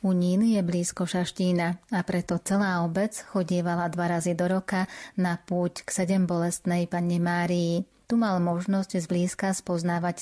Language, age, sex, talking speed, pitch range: Slovak, 30-49, female, 145 wpm, 175-190 Hz